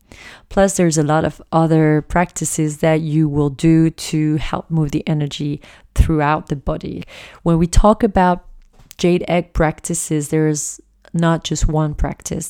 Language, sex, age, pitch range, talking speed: English, female, 30-49, 155-175 Hz, 150 wpm